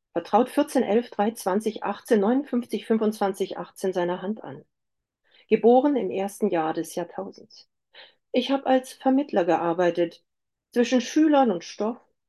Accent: German